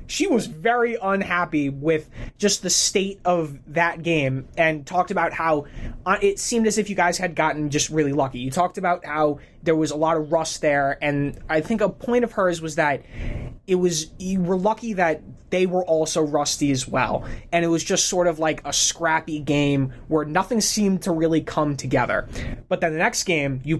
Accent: American